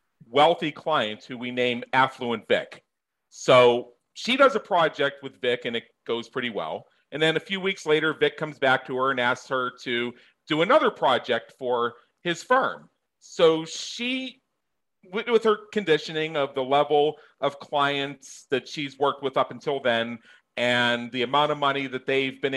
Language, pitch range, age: English, 125-170 Hz, 40-59